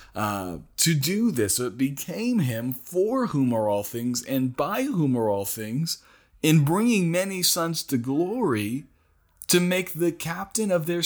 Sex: male